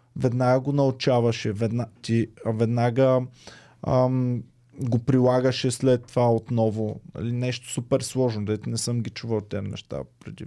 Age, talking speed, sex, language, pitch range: 20-39, 130 wpm, male, Bulgarian, 120-155 Hz